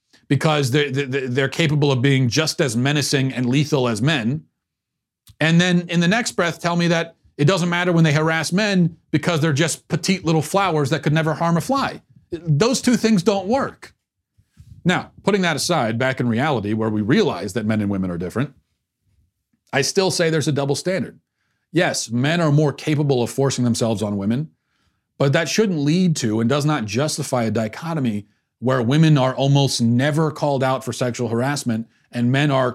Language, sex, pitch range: English, male, 120-160 Hz